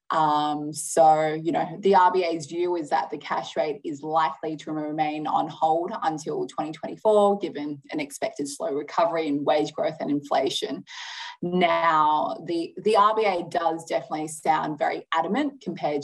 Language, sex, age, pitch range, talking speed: English, female, 20-39, 155-175 Hz, 150 wpm